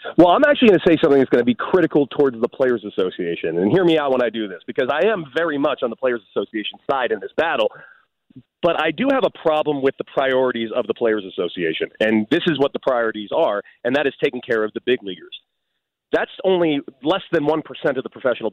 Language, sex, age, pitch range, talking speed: English, male, 30-49, 125-185 Hz, 240 wpm